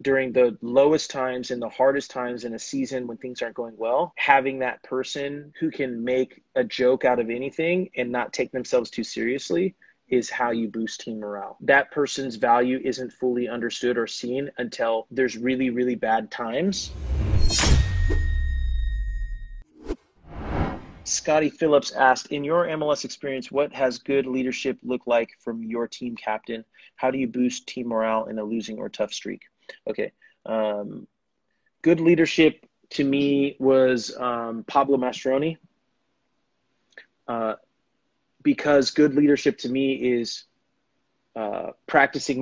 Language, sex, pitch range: English, male, 115-140 Hz